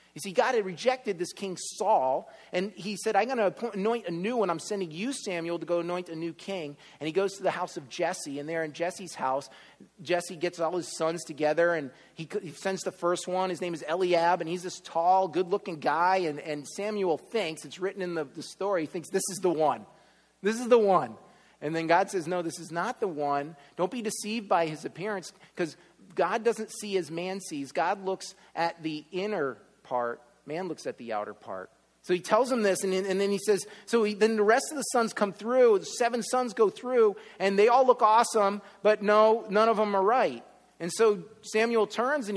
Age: 30-49